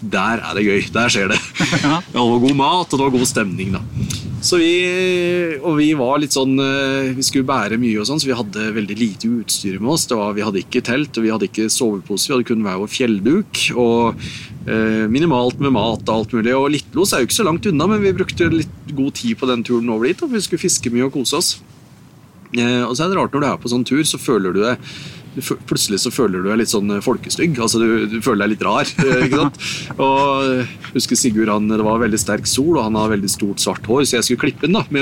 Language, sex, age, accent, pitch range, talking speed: English, male, 30-49, Norwegian, 110-150 Hz, 250 wpm